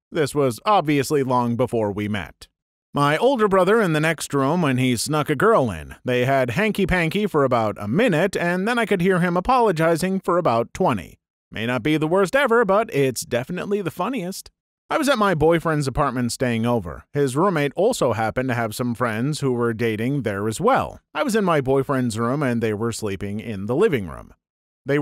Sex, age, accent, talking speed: male, 30-49, American, 205 wpm